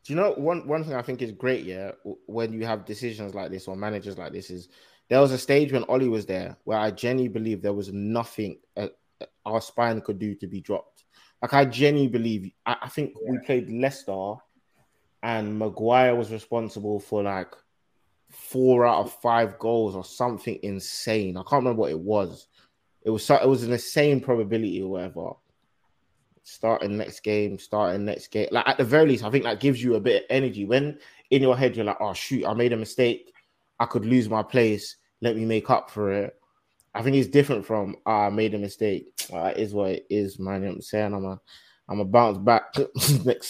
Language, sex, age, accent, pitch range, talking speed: English, male, 20-39, British, 105-125 Hz, 220 wpm